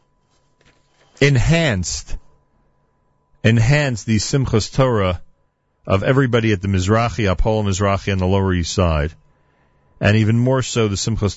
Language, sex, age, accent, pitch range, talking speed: English, male, 40-59, American, 85-120 Hz, 120 wpm